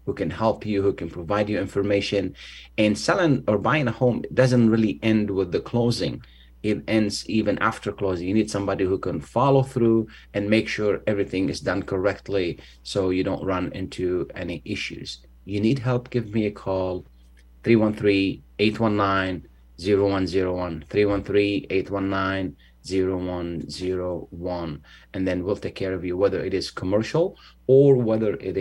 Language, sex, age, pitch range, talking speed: Arabic, male, 30-49, 90-105 Hz, 145 wpm